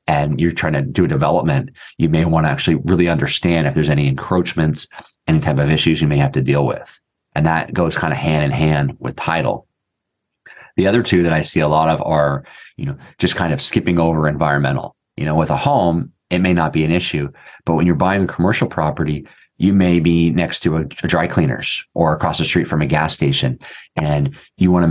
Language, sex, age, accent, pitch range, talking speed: English, male, 30-49, American, 75-85 Hz, 225 wpm